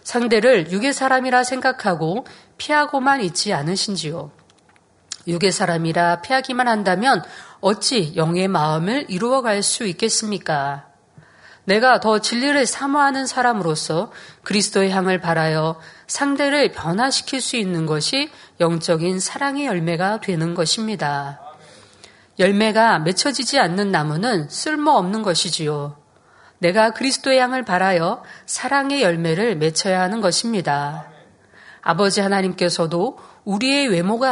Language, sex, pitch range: Korean, female, 170-255 Hz